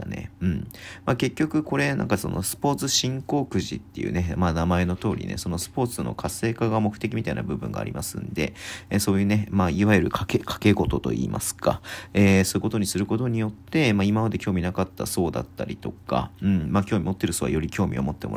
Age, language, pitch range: 40-59, Japanese, 90-105 Hz